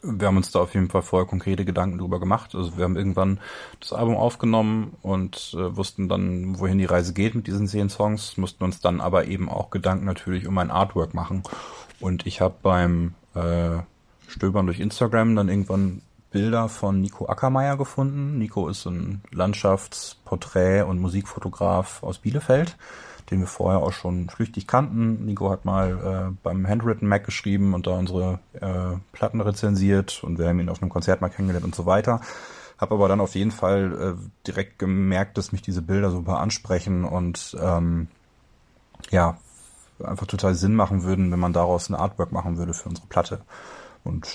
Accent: German